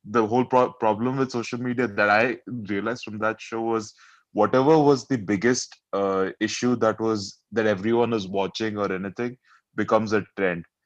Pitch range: 100-120 Hz